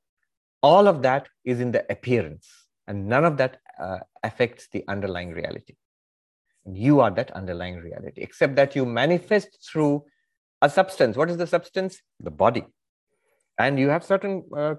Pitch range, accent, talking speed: 115-160 Hz, Indian, 160 wpm